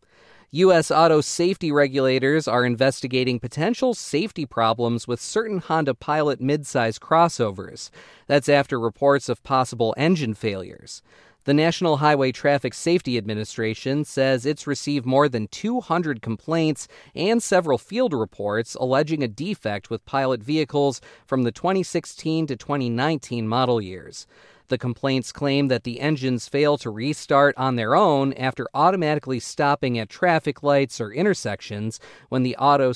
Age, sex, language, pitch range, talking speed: 40-59, male, English, 115-150 Hz, 135 wpm